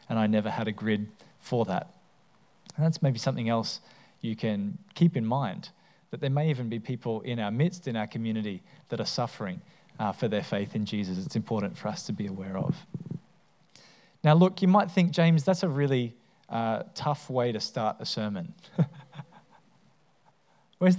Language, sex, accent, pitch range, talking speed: English, male, Australian, 115-155 Hz, 185 wpm